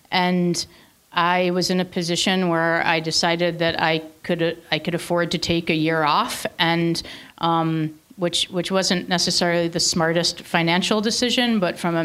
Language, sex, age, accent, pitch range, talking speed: English, female, 40-59, American, 165-185 Hz, 165 wpm